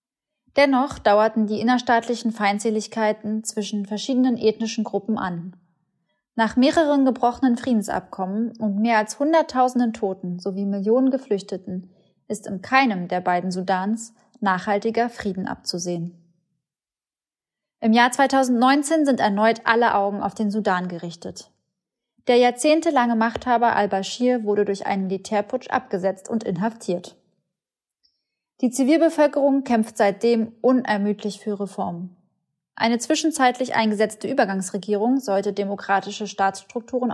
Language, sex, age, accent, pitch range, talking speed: German, female, 20-39, German, 200-250 Hz, 110 wpm